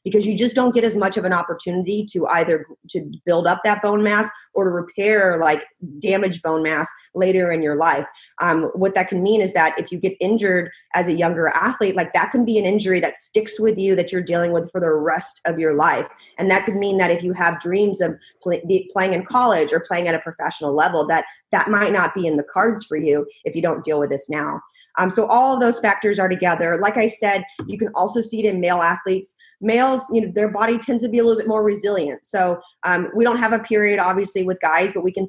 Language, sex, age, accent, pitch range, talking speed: English, female, 30-49, American, 170-205 Hz, 245 wpm